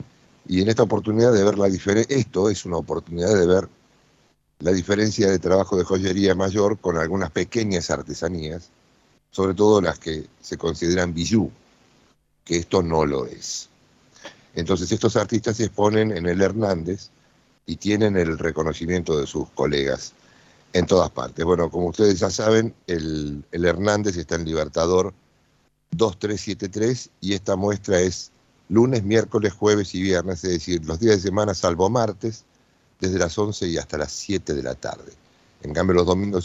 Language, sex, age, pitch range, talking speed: Spanish, male, 60-79, 85-105 Hz, 160 wpm